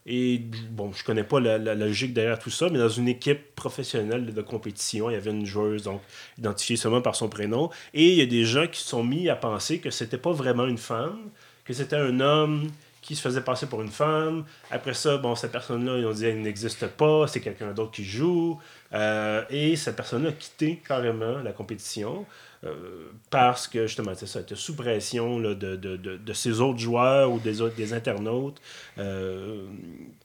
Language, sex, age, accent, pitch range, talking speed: French, male, 30-49, Canadian, 110-145 Hz, 210 wpm